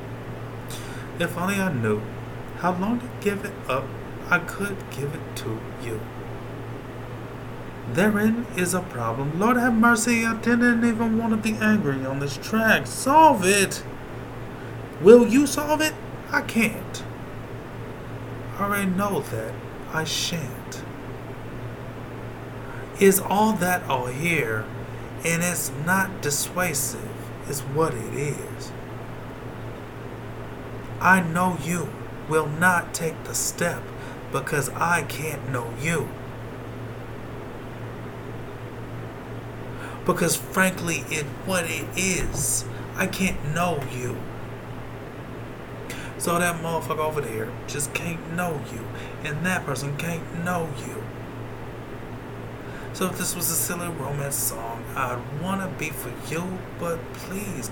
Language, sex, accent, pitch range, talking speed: English, male, American, 125-175 Hz, 115 wpm